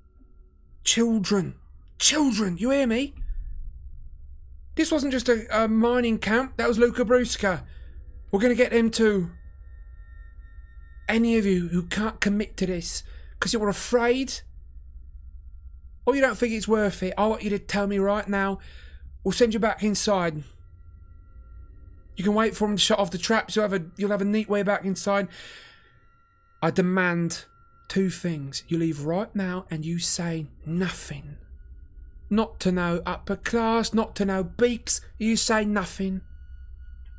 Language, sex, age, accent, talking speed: English, male, 30-49, British, 155 wpm